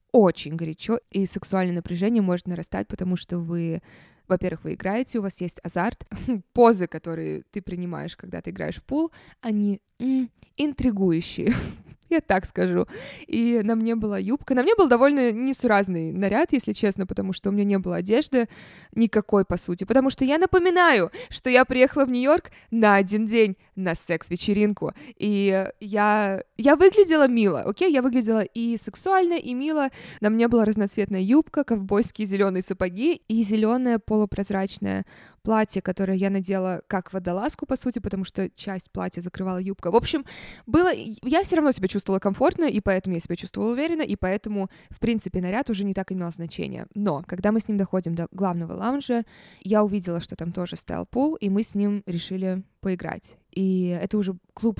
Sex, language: female, Russian